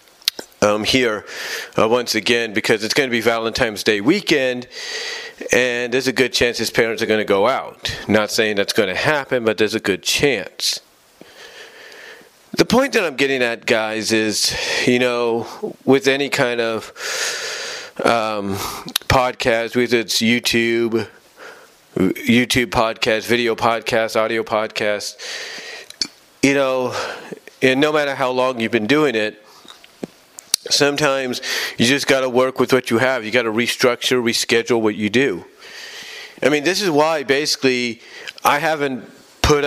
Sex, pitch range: male, 115-150 Hz